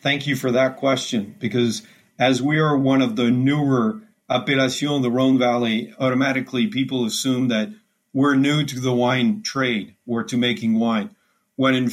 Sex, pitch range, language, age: male, 125-160 Hz, English, 40-59